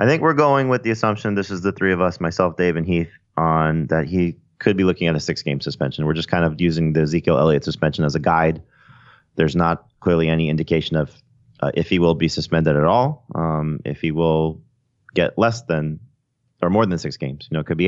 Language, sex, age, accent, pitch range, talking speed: English, male, 30-49, American, 80-95 Hz, 240 wpm